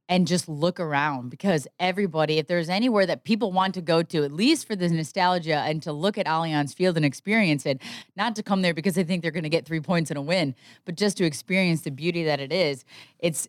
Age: 20-39